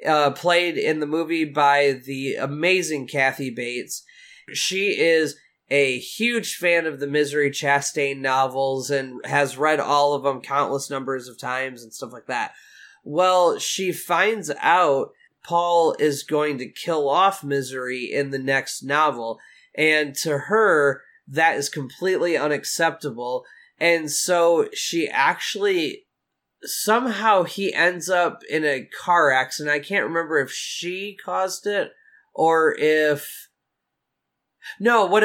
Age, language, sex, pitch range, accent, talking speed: 20-39, English, male, 140-180 Hz, American, 135 wpm